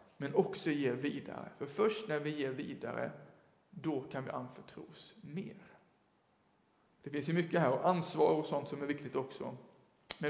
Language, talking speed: English, 170 wpm